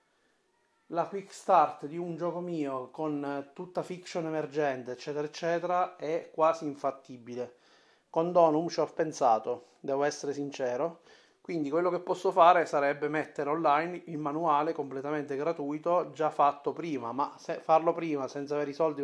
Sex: male